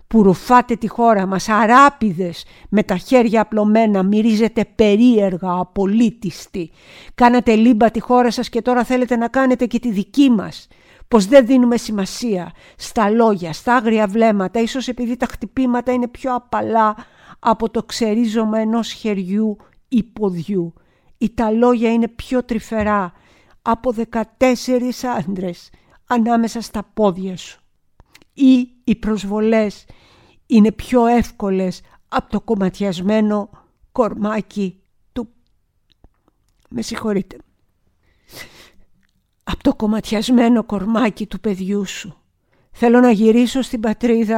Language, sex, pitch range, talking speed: Greek, female, 205-240 Hz, 115 wpm